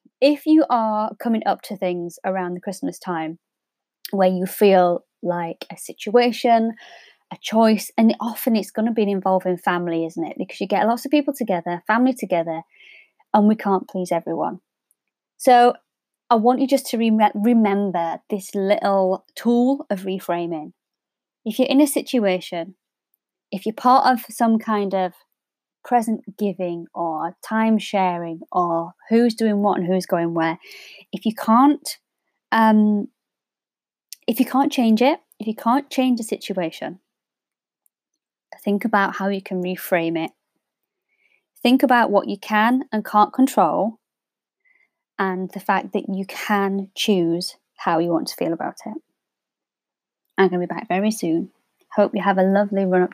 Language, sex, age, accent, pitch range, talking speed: English, female, 20-39, British, 185-245 Hz, 155 wpm